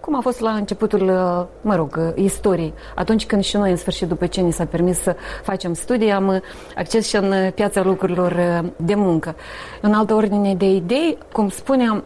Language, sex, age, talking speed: Romanian, female, 30-49, 185 wpm